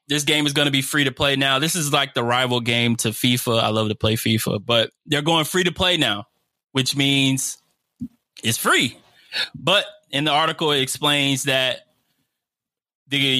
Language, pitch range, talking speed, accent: English, 115-140 Hz, 190 wpm, American